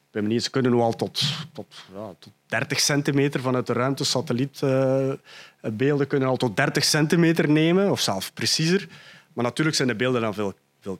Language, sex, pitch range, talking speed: Dutch, male, 115-140 Hz, 165 wpm